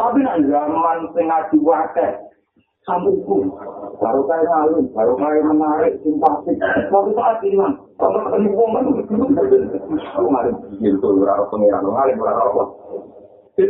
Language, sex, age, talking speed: Indonesian, male, 50-69, 100 wpm